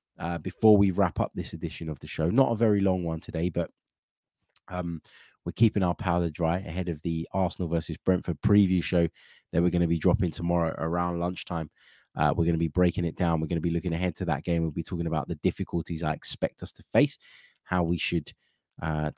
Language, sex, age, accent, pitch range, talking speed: English, male, 20-39, British, 85-105 Hz, 225 wpm